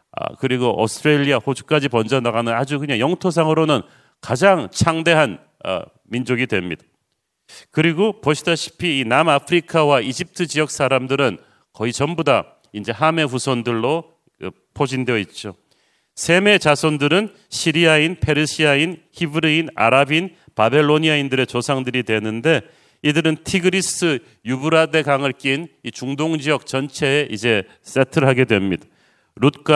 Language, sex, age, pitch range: Korean, male, 40-59, 125-160 Hz